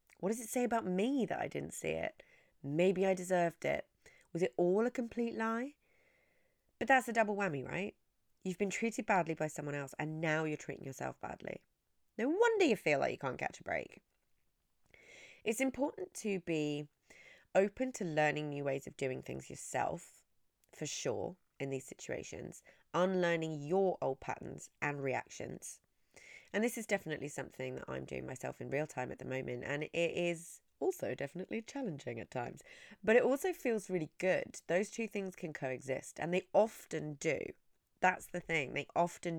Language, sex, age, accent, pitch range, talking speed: English, female, 30-49, British, 150-230 Hz, 180 wpm